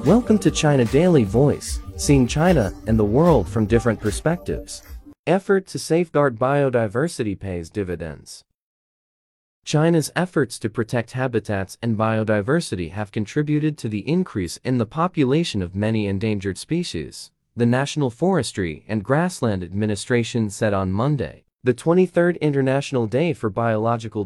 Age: 30-49